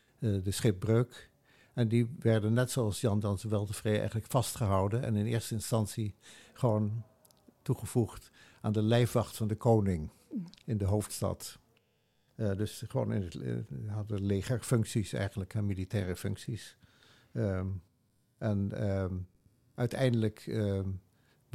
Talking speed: 115 wpm